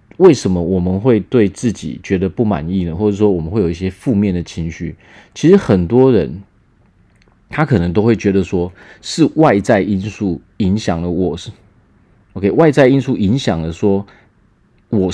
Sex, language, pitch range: male, Chinese, 95-115 Hz